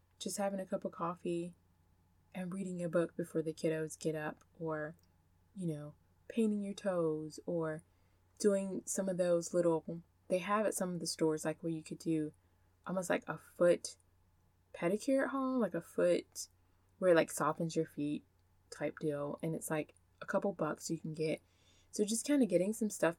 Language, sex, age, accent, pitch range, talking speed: English, female, 20-39, American, 150-195 Hz, 190 wpm